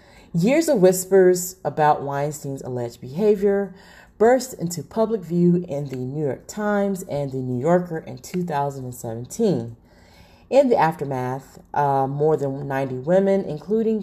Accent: American